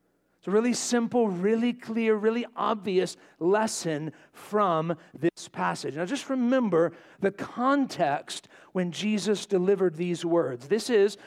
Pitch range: 195-245 Hz